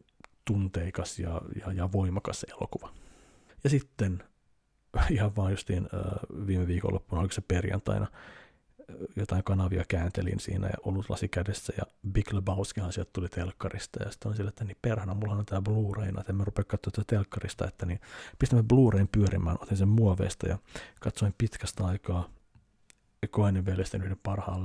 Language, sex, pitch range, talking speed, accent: Finnish, male, 95-105 Hz, 145 wpm, native